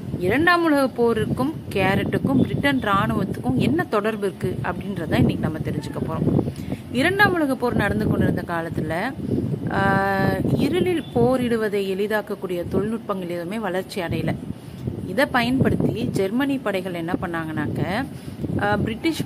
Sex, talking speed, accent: female, 105 wpm, native